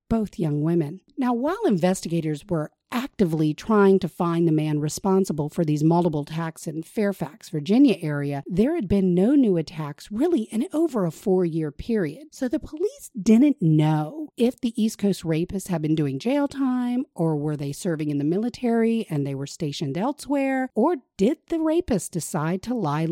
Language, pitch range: English, 165-260 Hz